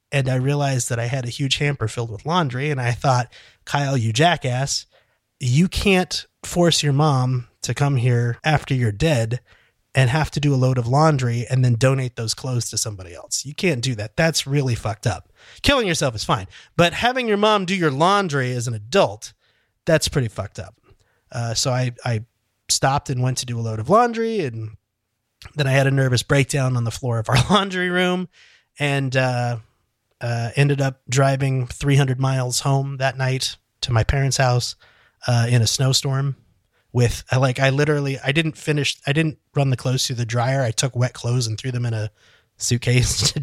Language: English